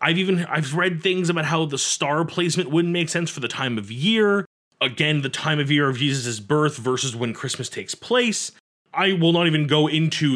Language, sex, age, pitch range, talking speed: English, male, 30-49, 125-170 Hz, 215 wpm